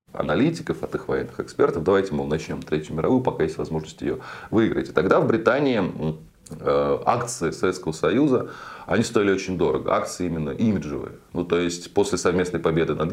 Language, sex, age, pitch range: Russian, male, 20-39, 90-135 Hz